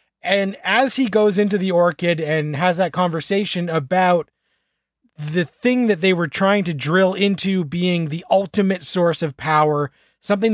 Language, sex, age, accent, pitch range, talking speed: English, male, 30-49, American, 170-205 Hz, 160 wpm